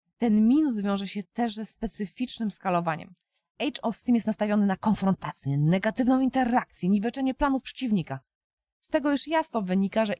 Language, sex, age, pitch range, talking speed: Polish, female, 20-39, 180-240 Hz, 155 wpm